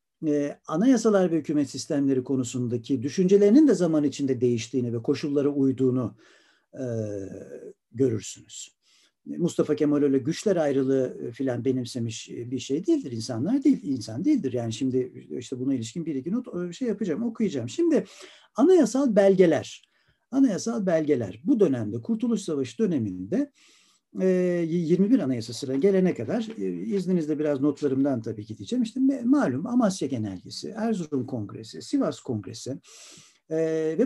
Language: Turkish